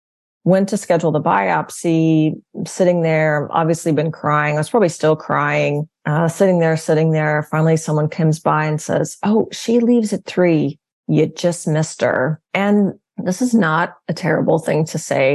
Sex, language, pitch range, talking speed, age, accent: female, English, 155-180 Hz, 170 wpm, 30-49, American